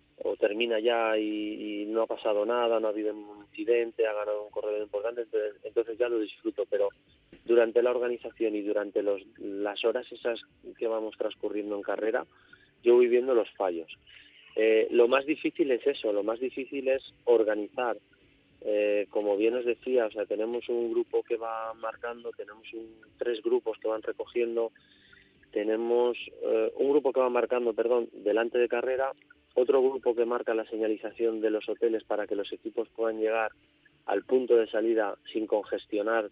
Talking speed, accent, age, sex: 175 wpm, Spanish, 30-49, male